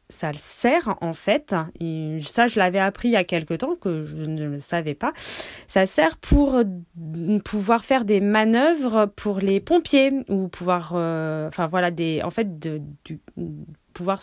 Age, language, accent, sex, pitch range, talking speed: 30-49, French, French, female, 160-215 Hz, 175 wpm